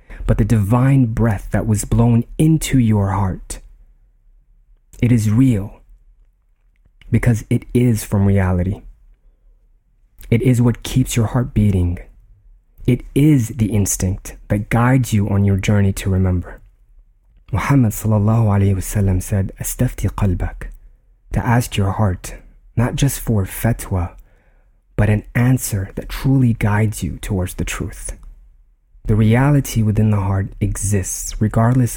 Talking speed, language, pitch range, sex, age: 130 wpm, English, 95-115 Hz, male, 30-49